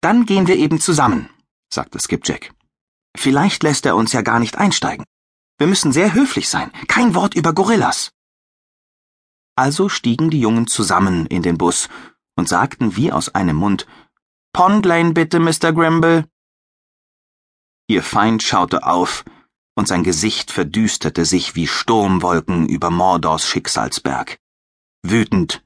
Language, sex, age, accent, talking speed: German, male, 30-49, German, 135 wpm